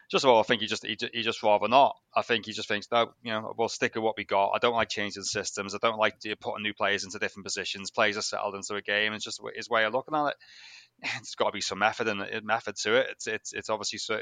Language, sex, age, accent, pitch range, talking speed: English, male, 20-39, British, 105-125 Hz, 300 wpm